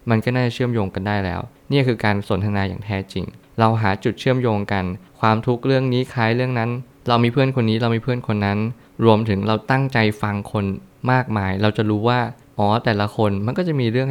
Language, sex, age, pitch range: Thai, male, 20-39, 100-125 Hz